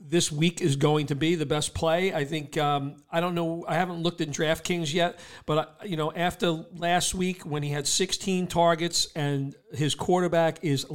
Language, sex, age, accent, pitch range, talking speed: English, male, 40-59, American, 150-170 Hz, 195 wpm